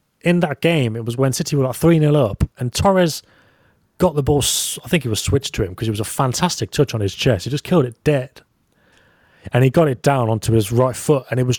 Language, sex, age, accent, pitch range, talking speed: English, male, 30-49, British, 110-145 Hz, 255 wpm